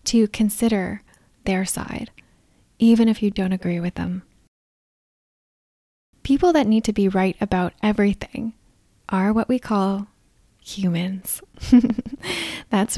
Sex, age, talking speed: female, 10-29, 115 wpm